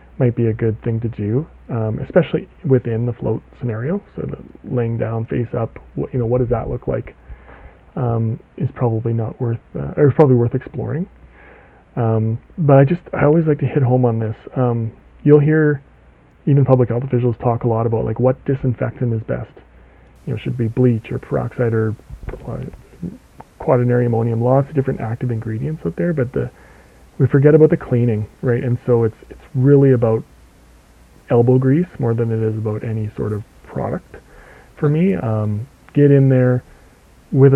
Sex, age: male, 30-49